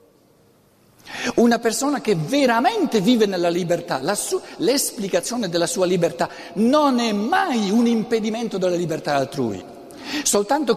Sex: male